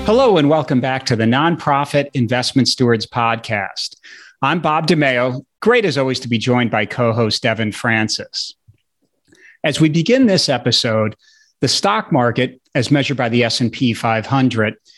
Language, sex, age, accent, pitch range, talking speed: English, male, 40-59, American, 120-160 Hz, 150 wpm